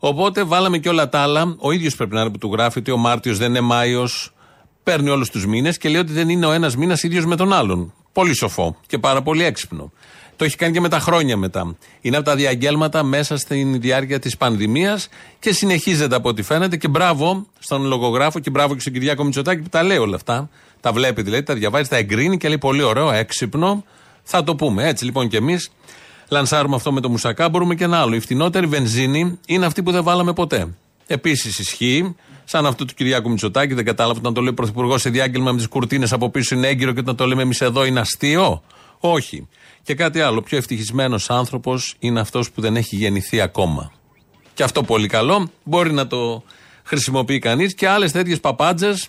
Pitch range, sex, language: 120-165 Hz, male, Greek